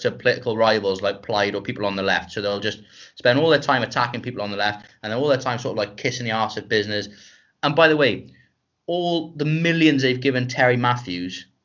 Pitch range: 105-140 Hz